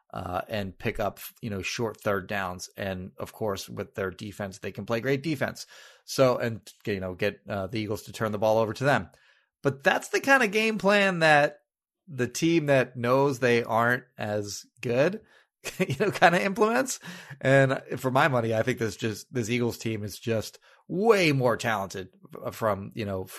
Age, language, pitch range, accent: 30-49, English, 105-135 Hz, American